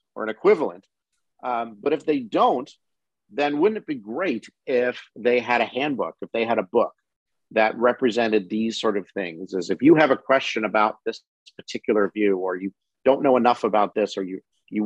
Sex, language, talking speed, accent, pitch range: male, English, 200 wpm, American, 105-120 Hz